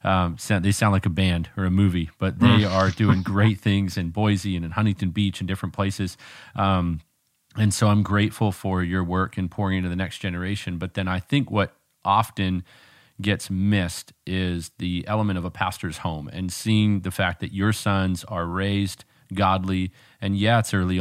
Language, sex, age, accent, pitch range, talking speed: English, male, 40-59, American, 95-110 Hz, 190 wpm